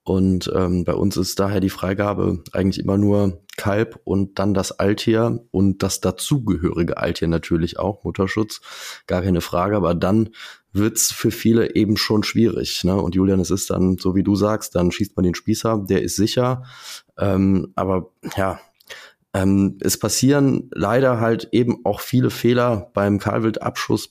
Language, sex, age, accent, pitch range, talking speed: German, male, 20-39, German, 95-110 Hz, 165 wpm